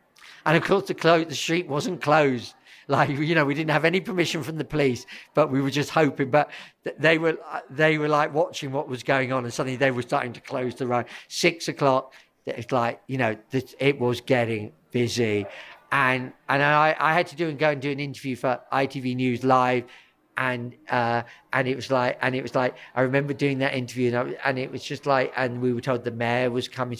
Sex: male